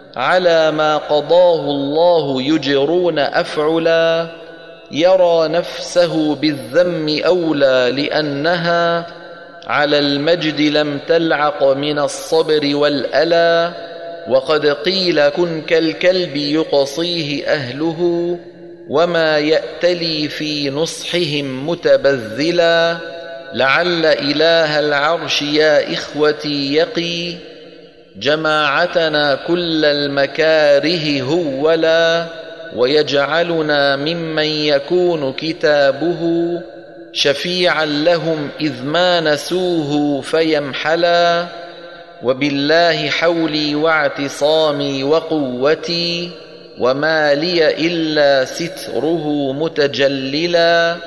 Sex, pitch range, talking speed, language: male, 145-170 Hz, 70 wpm, Arabic